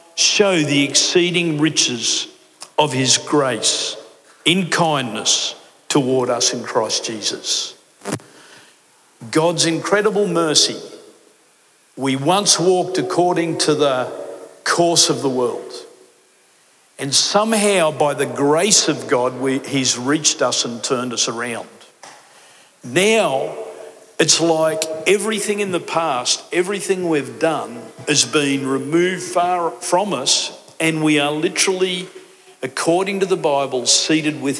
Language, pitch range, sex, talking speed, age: English, 135-180 Hz, male, 115 wpm, 50-69